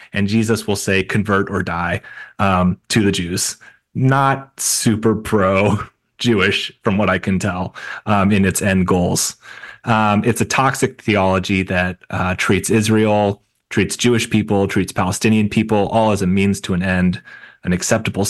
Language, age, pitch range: English, 30-49, 95-115 Hz